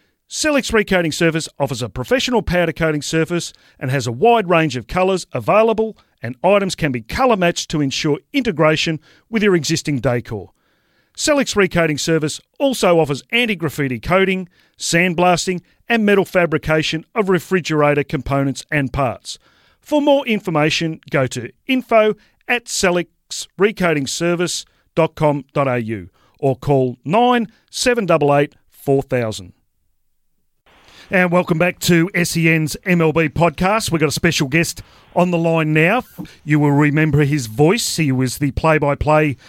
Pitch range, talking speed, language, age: 145-180 Hz, 125 wpm, English, 40-59